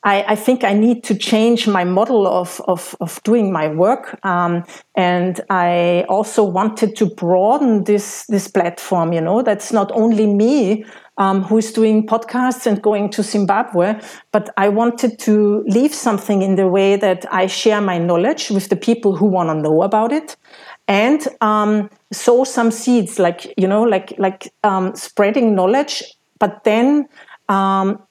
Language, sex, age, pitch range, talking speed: English, female, 40-59, 190-230 Hz, 170 wpm